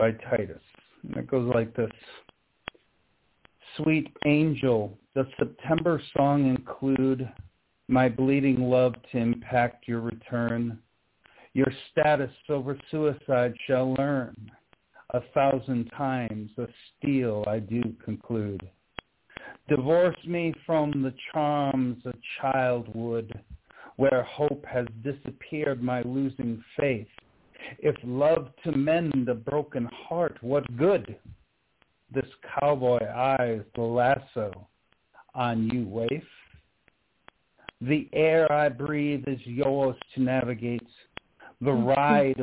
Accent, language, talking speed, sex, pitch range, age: American, English, 105 wpm, male, 120-145 Hz, 50-69